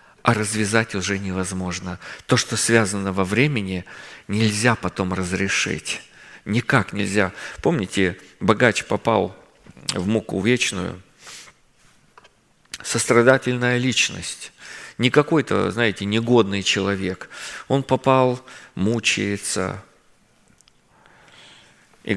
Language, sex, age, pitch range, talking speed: Russian, male, 40-59, 105-130 Hz, 85 wpm